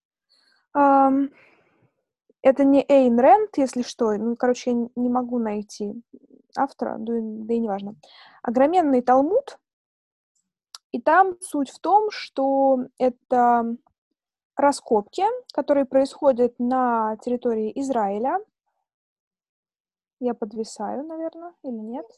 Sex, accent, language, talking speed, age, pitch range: female, native, Russian, 105 wpm, 20-39, 230-285 Hz